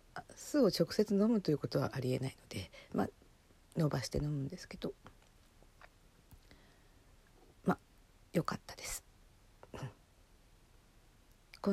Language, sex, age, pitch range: Japanese, female, 50-69, 135-185 Hz